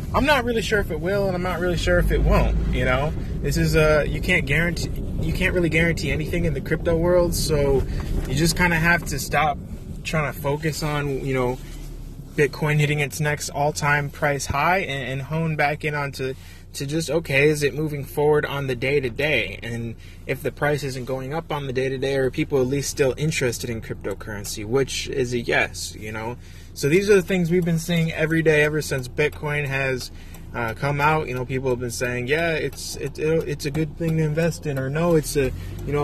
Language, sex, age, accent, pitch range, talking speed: English, male, 20-39, American, 125-155 Hz, 220 wpm